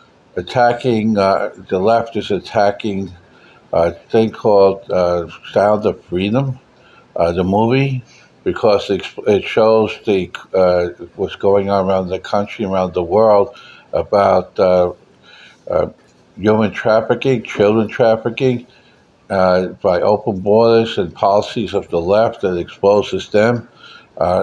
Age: 60-79